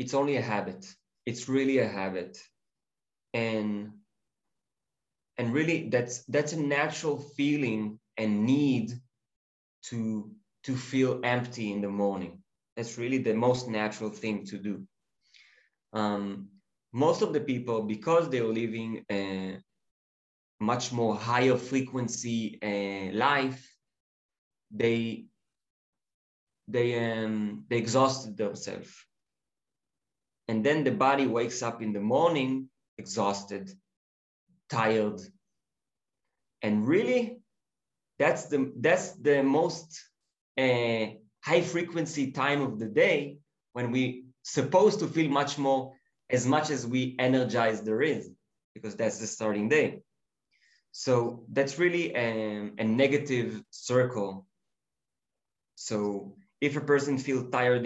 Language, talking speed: English, 115 wpm